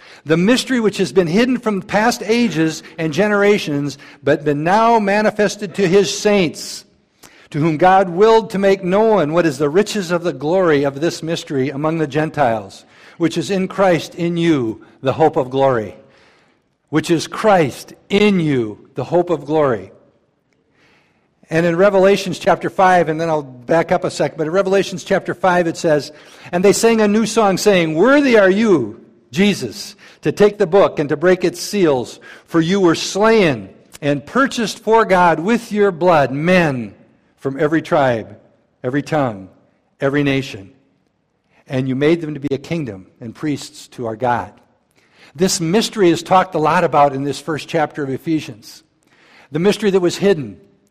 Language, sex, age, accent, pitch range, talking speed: English, male, 60-79, American, 145-195 Hz, 170 wpm